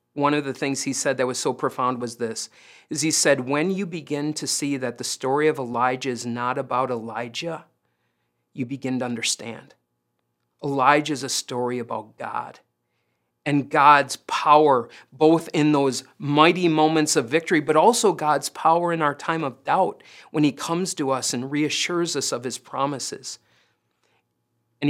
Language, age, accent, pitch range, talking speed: English, 40-59, American, 125-160 Hz, 170 wpm